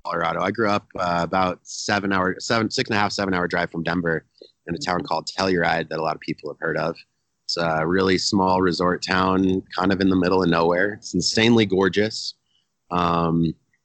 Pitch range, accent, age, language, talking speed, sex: 85-110 Hz, American, 30-49, English, 210 wpm, male